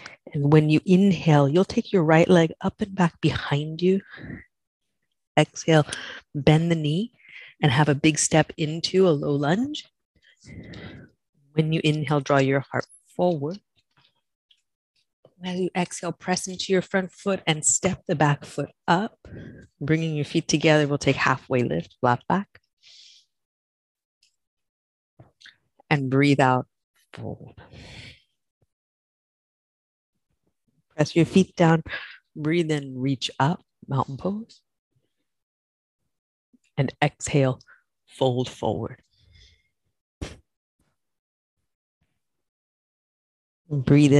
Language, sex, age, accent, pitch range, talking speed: English, female, 40-59, American, 135-175 Hz, 105 wpm